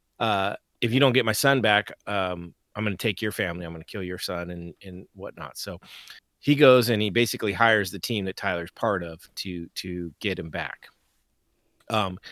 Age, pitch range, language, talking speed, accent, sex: 30-49, 95-120 Hz, English, 200 wpm, American, male